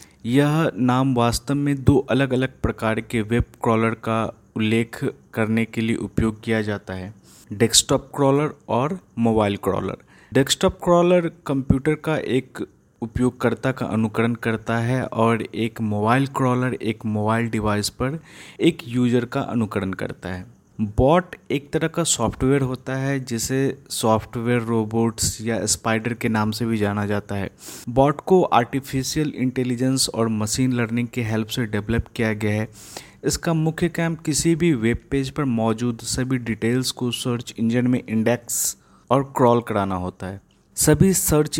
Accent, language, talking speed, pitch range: native, Hindi, 150 wpm, 110-135 Hz